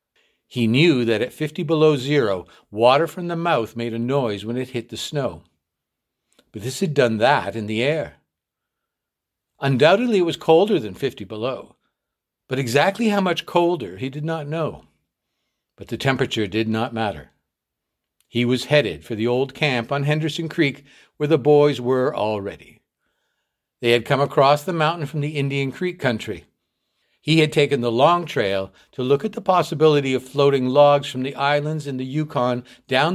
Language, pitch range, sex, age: English, 110-155 Hz, male, 60-79